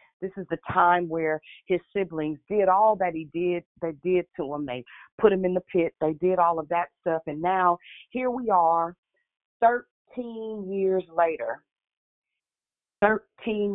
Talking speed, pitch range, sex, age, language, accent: 160 wpm, 175-220 Hz, female, 40-59, English, American